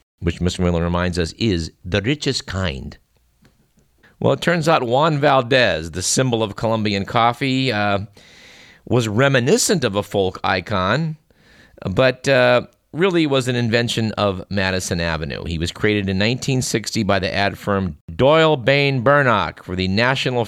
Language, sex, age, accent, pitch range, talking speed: English, male, 50-69, American, 95-130 Hz, 150 wpm